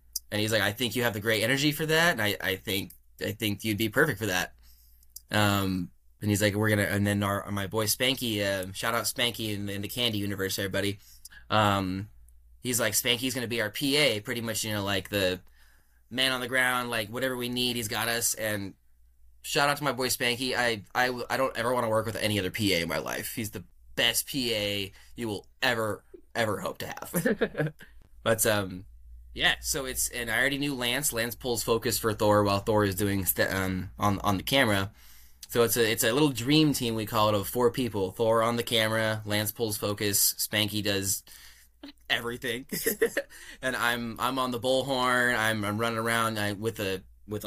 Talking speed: 215 wpm